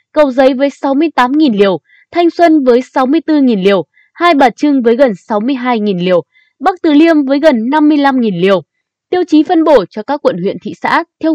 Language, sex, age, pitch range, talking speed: Vietnamese, female, 10-29, 210-310 Hz, 185 wpm